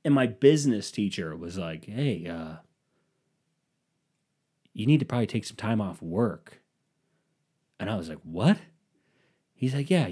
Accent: American